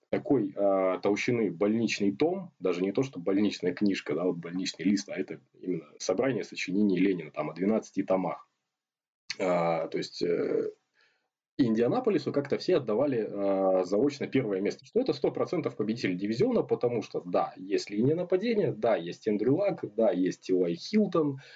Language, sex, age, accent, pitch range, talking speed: Russian, male, 20-39, native, 95-140 Hz, 155 wpm